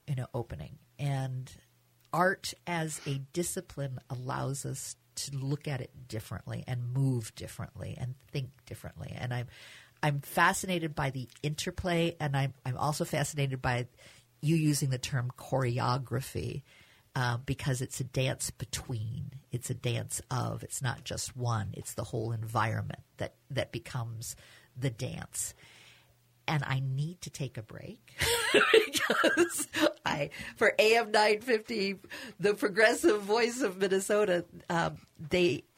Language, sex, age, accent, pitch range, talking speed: English, female, 50-69, American, 120-170 Hz, 140 wpm